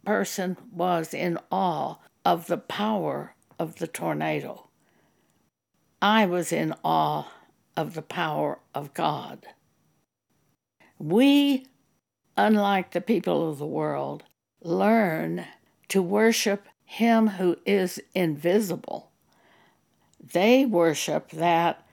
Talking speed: 100 wpm